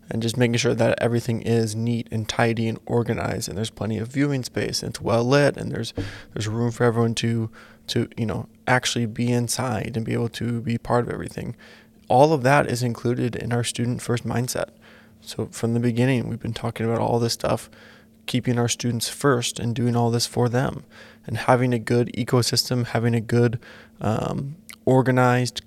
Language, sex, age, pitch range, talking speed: English, male, 20-39, 115-130 Hz, 195 wpm